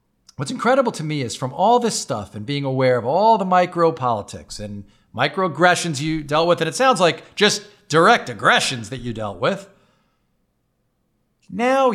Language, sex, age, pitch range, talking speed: English, male, 50-69, 135-205 Hz, 165 wpm